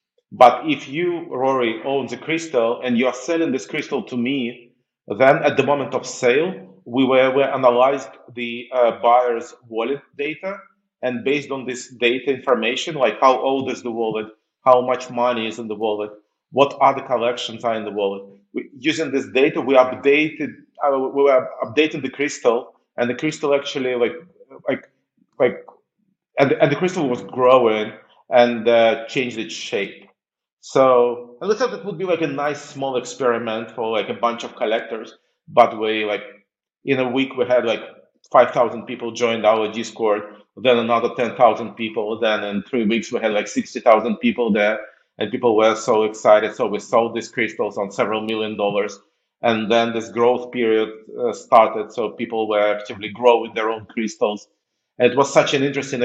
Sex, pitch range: male, 110-140 Hz